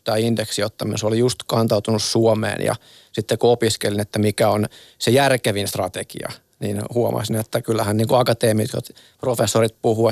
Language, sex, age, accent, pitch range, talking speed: Finnish, male, 20-39, native, 110-120 Hz, 150 wpm